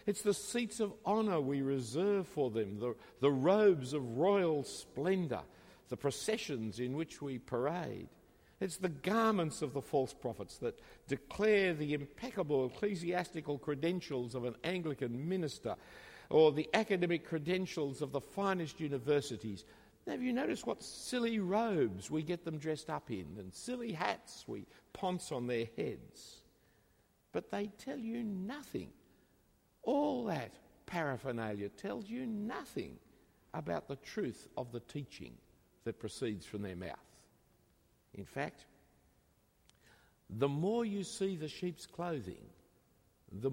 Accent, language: Australian, English